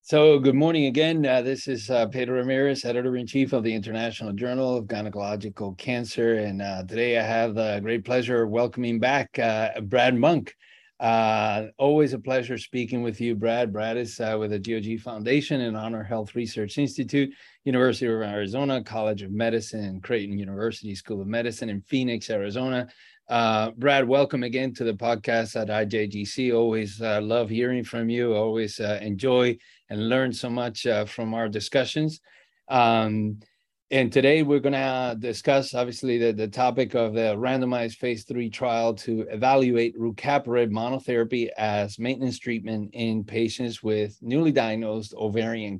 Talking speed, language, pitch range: 160 wpm, English, 110-130 Hz